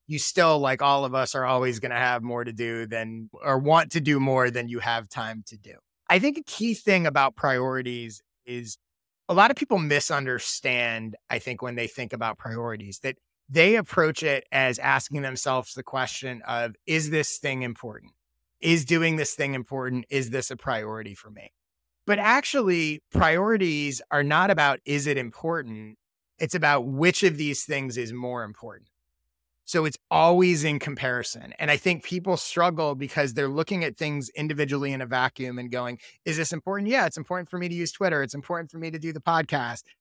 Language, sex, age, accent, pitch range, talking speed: English, male, 30-49, American, 125-165 Hz, 195 wpm